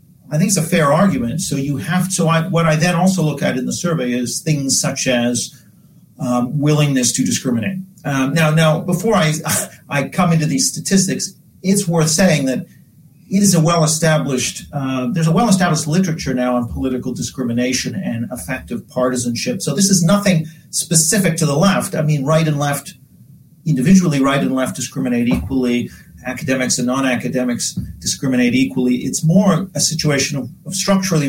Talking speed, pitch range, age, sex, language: 175 wpm, 125-170 Hz, 40-59, male, English